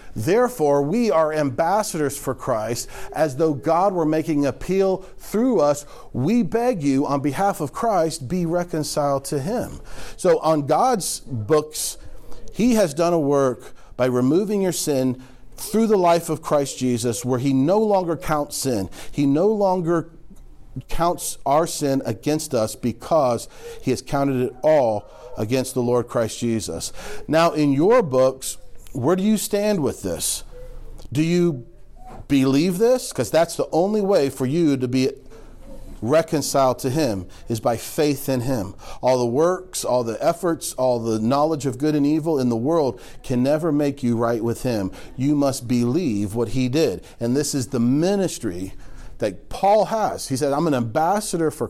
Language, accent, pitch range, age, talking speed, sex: English, American, 125-170 Hz, 40-59, 165 wpm, male